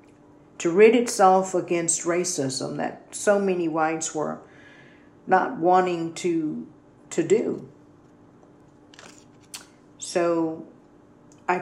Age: 50-69